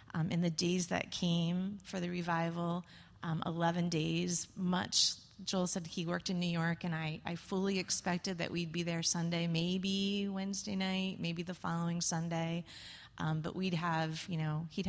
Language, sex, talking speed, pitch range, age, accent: English, female, 175 wpm, 160-175 Hz, 30-49, American